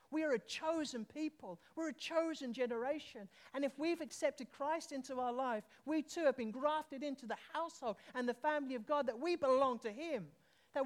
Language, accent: English, British